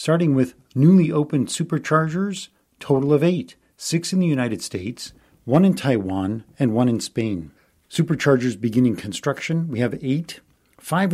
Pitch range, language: 115-155 Hz, English